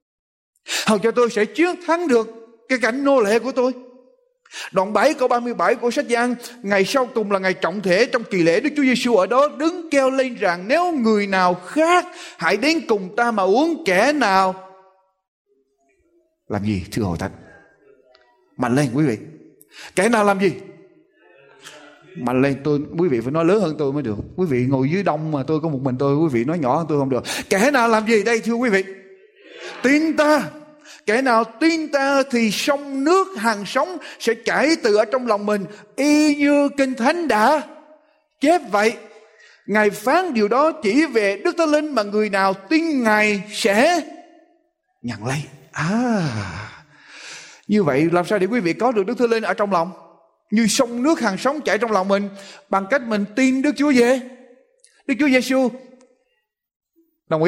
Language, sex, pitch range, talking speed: Vietnamese, male, 190-285 Hz, 190 wpm